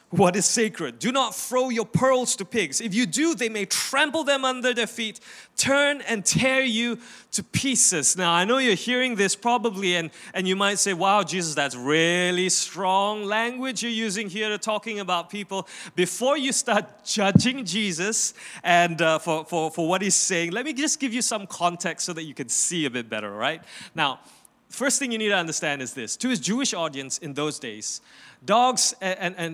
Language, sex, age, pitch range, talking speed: English, male, 30-49, 160-225 Hz, 200 wpm